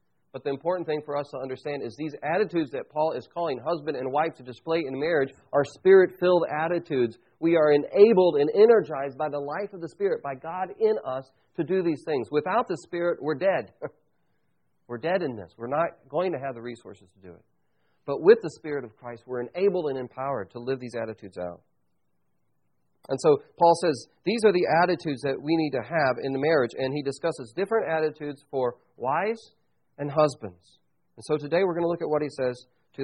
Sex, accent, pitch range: male, American, 115-160 Hz